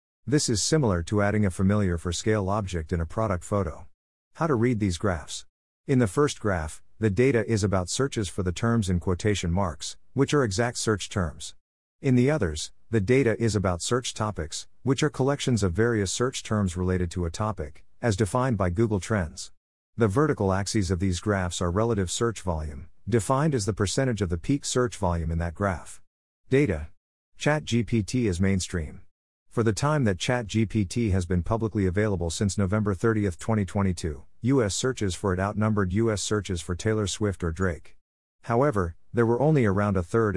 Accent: American